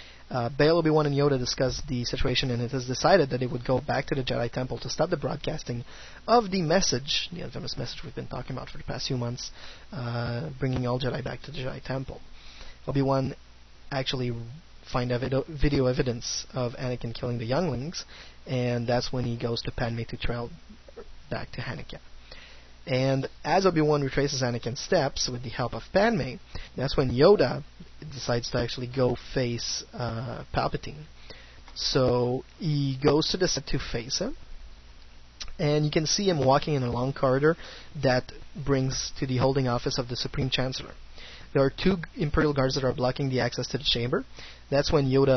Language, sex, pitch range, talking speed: English, male, 120-145 Hz, 185 wpm